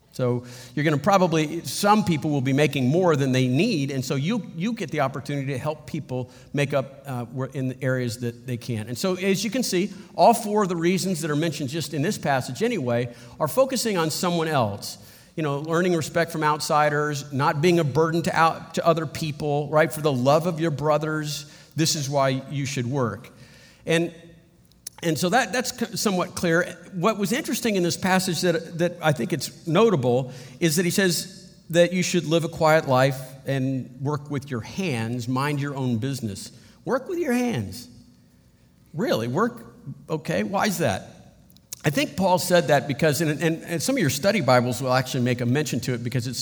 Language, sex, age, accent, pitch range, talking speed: English, male, 50-69, American, 130-175 Hz, 205 wpm